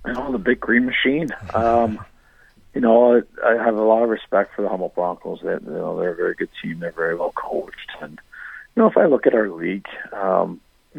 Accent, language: American, English